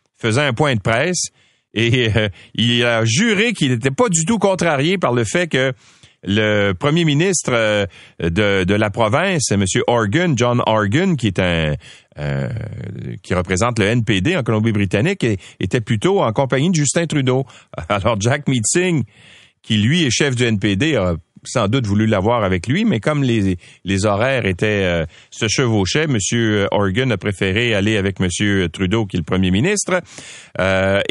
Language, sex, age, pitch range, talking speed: French, male, 40-59, 105-155 Hz, 170 wpm